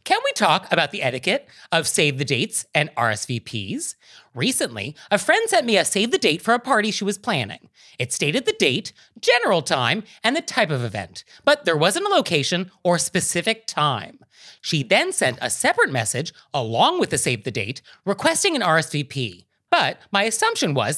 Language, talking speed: English, 170 wpm